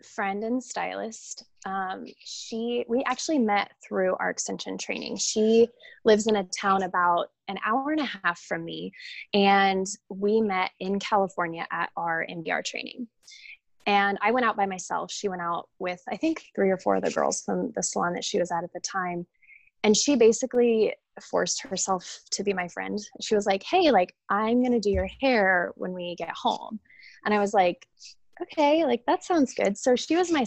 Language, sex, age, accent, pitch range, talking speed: English, female, 20-39, American, 190-245 Hz, 195 wpm